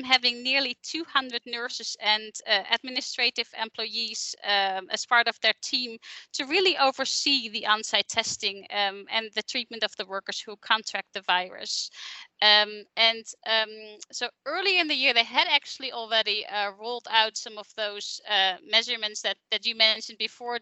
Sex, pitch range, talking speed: female, 210-250 Hz, 165 wpm